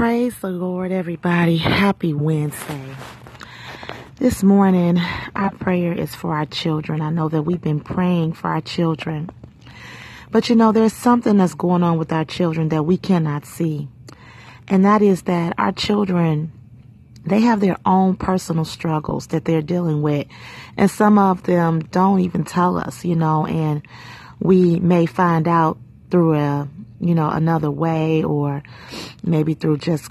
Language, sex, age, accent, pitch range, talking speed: English, female, 30-49, American, 145-180 Hz, 155 wpm